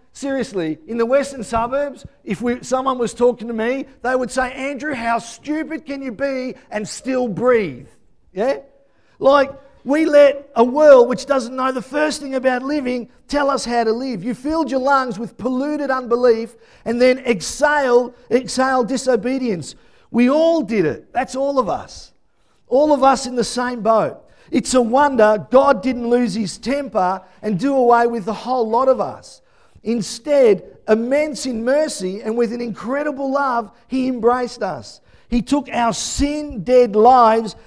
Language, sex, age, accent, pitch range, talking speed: English, male, 50-69, Australian, 230-275 Hz, 165 wpm